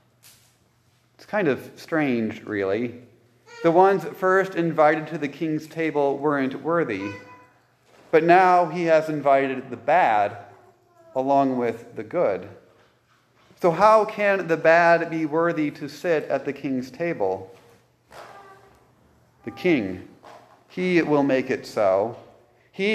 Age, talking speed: 30-49, 120 wpm